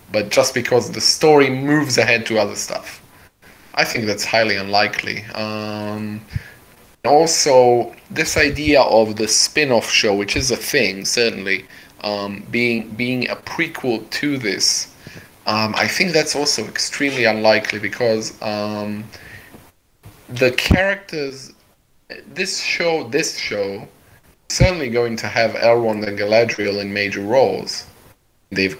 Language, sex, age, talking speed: English, male, 20-39, 130 wpm